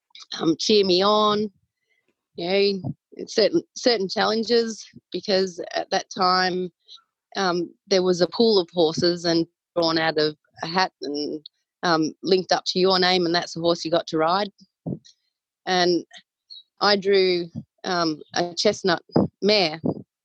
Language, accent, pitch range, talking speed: English, Australian, 160-205 Hz, 145 wpm